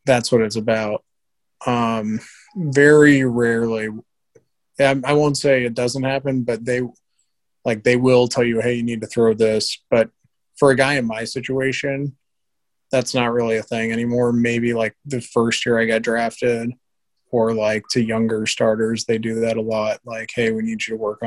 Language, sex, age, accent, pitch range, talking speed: English, male, 20-39, American, 115-130 Hz, 180 wpm